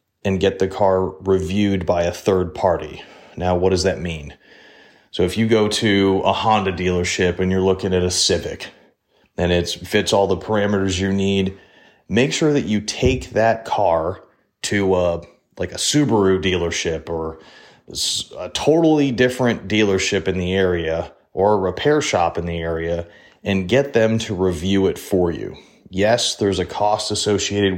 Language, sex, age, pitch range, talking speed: English, male, 30-49, 90-105 Hz, 165 wpm